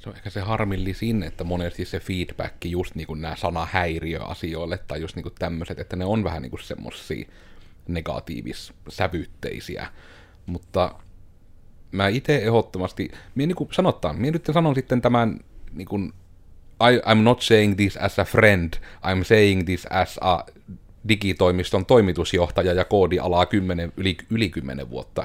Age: 30-49